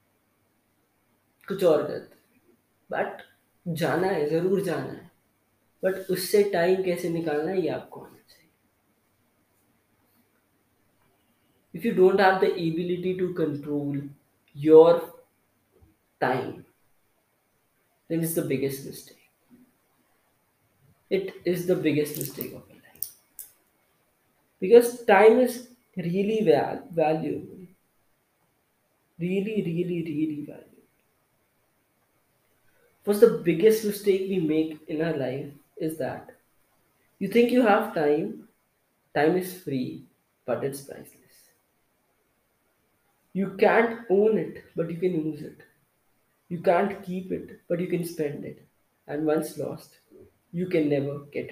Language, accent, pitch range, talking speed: English, Indian, 155-195 Hz, 105 wpm